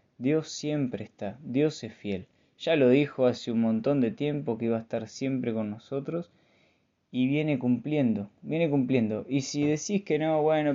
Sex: male